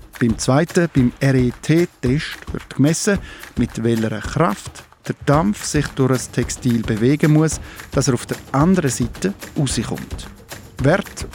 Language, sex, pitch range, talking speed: German, male, 120-155 Hz, 130 wpm